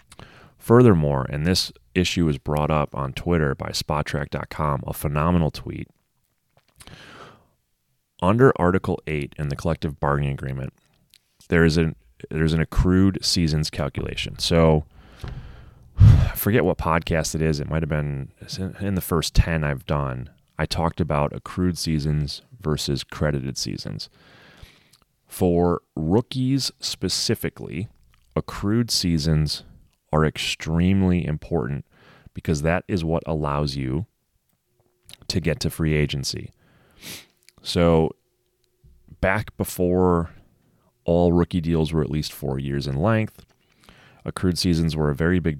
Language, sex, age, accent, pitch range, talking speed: English, male, 30-49, American, 75-90 Hz, 125 wpm